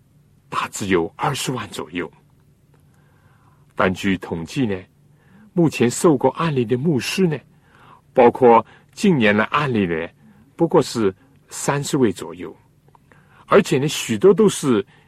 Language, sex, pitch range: Chinese, male, 115-150 Hz